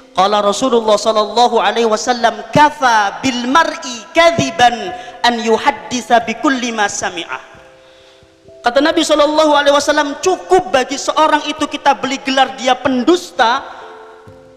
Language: Indonesian